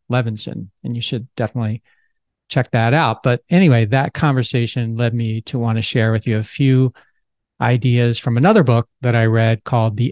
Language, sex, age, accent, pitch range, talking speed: English, male, 40-59, American, 115-140 Hz, 185 wpm